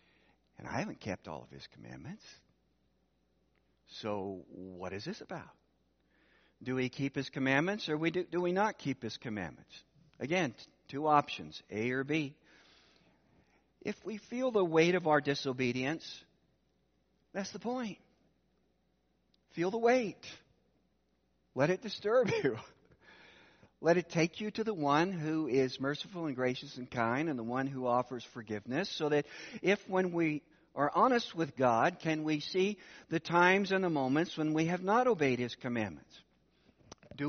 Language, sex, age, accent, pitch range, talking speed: English, male, 60-79, American, 120-175 Hz, 155 wpm